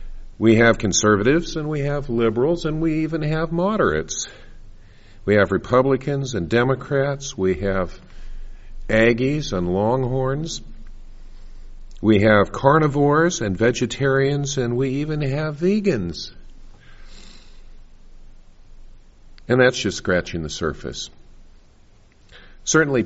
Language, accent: English, American